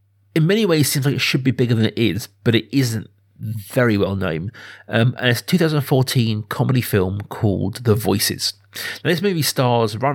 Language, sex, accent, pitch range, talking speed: English, male, British, 100-125 Hz, 195 wpm